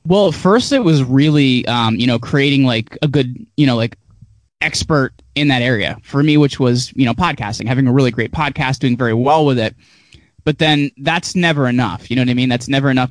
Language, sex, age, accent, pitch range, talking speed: English, male, 20-39, American, 120-145 Hz, 225 wpm